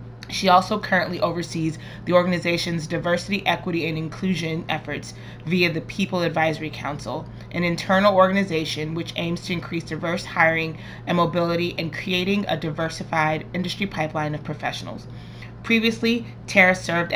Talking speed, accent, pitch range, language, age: 135 wpm, American, 155-185 Hz, English, 20-39